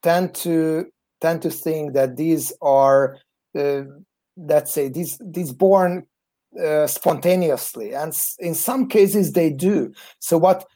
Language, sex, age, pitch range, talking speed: Hungarian, male, 30-49, 150-180 Hz, 135 wpm